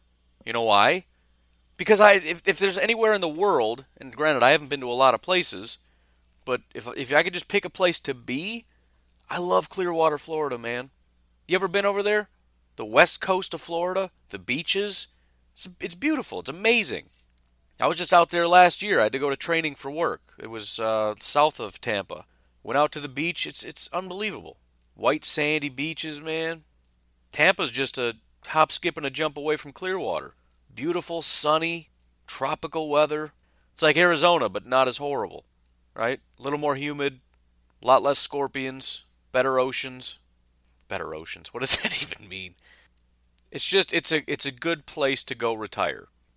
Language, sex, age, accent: English, male, 40-59, American